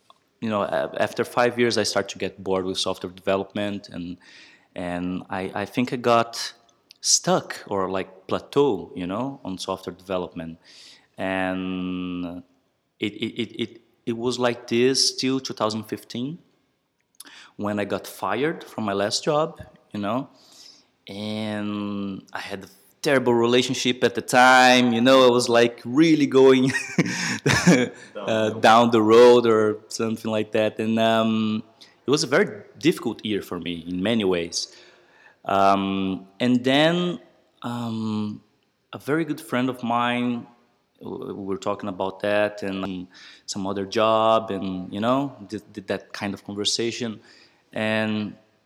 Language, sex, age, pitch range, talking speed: English, male, 20-39, 95-125 Hz, 145 wpm